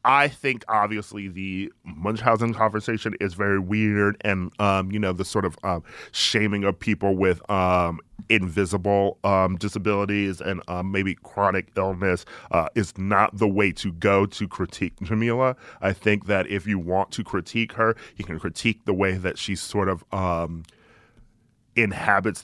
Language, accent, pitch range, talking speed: English, American, 95-105 Hz, 160 wpm